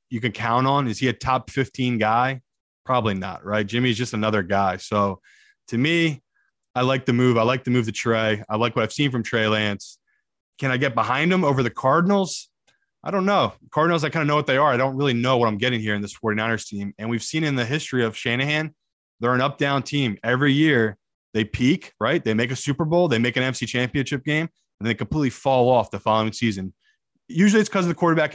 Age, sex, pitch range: 20-39, male, 110-140 Hz